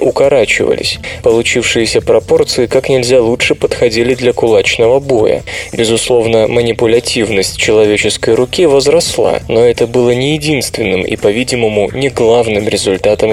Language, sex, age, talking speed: Russian, male, 20-39, 115 wpm